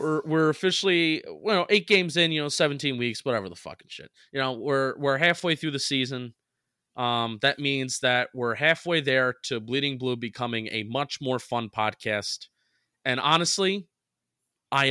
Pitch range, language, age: 120-145 Hz, English, 20-39